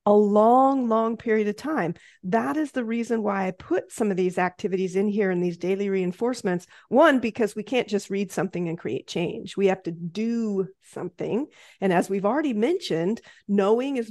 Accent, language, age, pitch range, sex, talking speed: American, English, 40-59, 195-255 Hz, female, 190 wpm